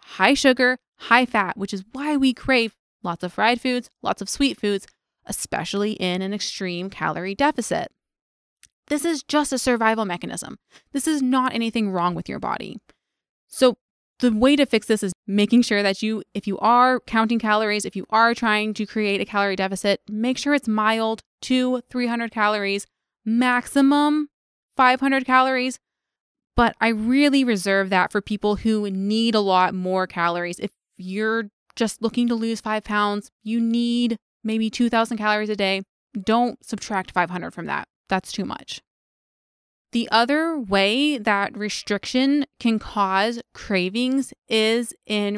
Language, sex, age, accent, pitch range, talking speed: English, female, 20-39, American, 200-245 Hz, 155 wpm